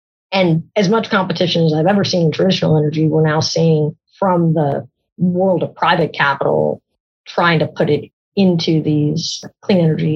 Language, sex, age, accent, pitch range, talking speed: English, female, 30-49, American, 155-175 Hz, 165 wpm